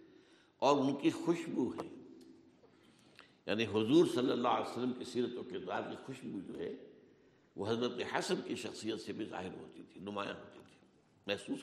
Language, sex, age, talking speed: Urdu, male, 60-79, 170 wpm